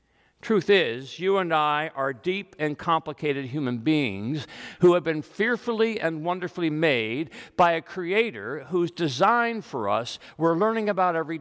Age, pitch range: 50-69, 160-215 Hz